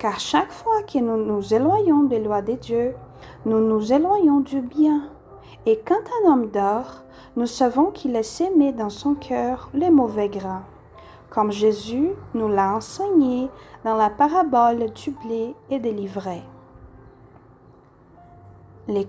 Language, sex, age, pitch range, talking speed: Portuguese, female, 40-59, 205-305 Hz, 145 wpm